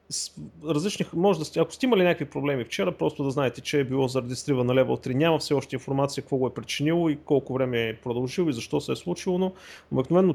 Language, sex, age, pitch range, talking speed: Bulgarian, male, 30-49, 110-150 Hz, 225 wpm